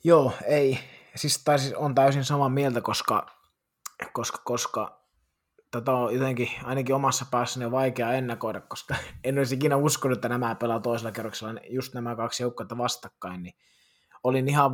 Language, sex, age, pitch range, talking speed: Finnish, male, 20-39, 110-130 Hz, 155 wpm